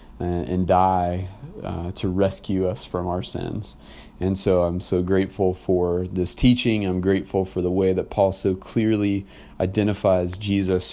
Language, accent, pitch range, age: English, American, 90-105 Hz, 30-49